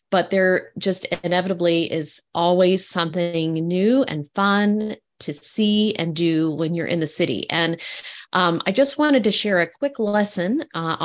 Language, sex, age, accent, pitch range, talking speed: English, female, 30-49, American, 165-205 Hz, 165 wpm